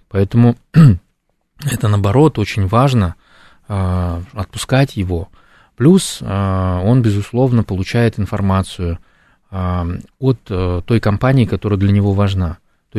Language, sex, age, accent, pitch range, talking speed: Russian, male, 20-39, native, 95-130 Hz, 90 wpm